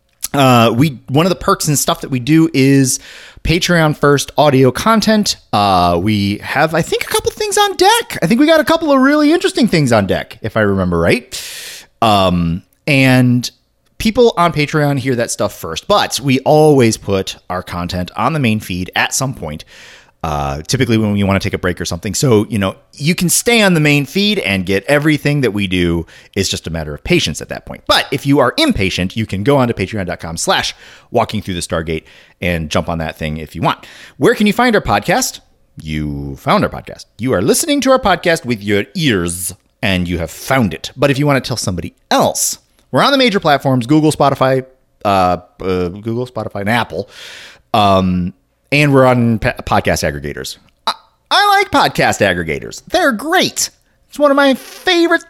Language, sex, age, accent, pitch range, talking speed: English, male, 30-49, American, 95-160 Hz, 205 wpm